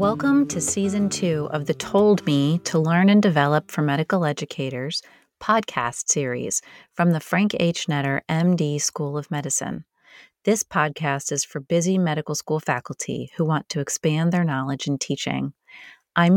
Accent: American